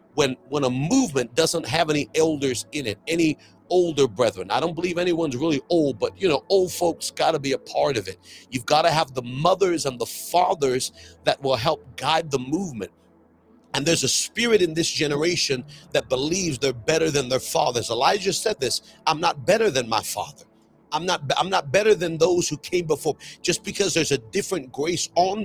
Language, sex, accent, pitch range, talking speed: English, male, American, 135-180 Hz, 205 wpm